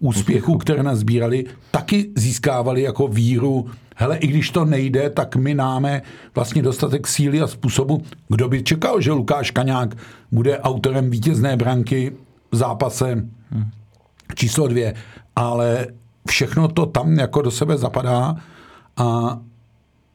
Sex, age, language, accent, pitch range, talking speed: male, 50-69, Czech, native, 120-140 Hz, 125 wpm